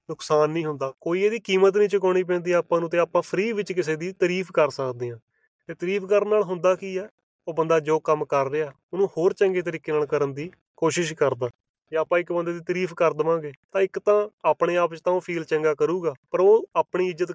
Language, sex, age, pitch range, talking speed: Punjabi, male, 30-49, 150-180 Hz, 220 wpm